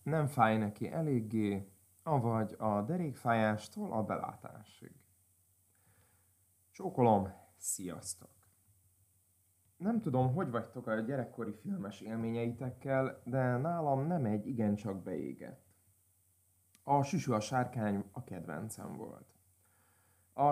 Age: 30-49